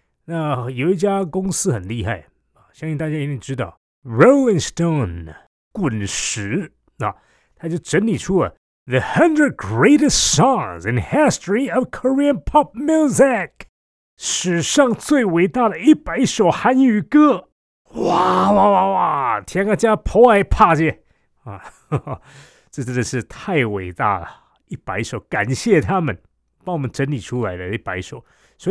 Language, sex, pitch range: Chinese, male, 115-195 Hz